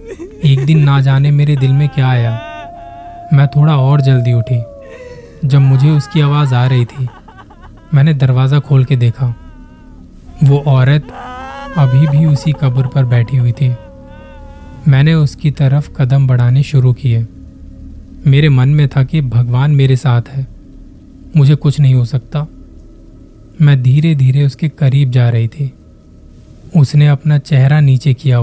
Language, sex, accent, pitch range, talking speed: Hindi, male, native, 120-145 Hz, 150 wpm